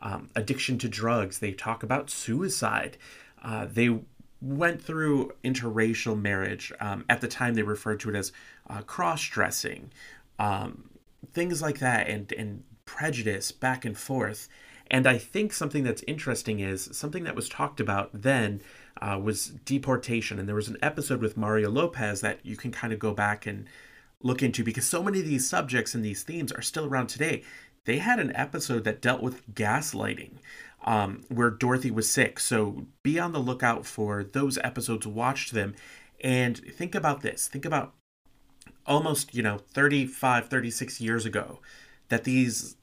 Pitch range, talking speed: 110-135 Hz, 165 wpm